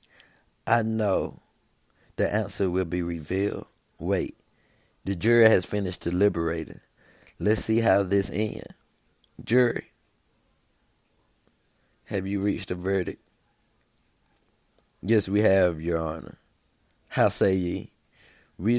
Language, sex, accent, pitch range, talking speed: English, male, American, 95-110 Hz, 105 wpm